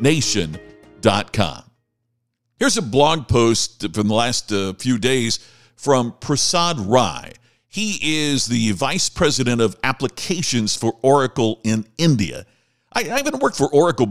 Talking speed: 130 wpm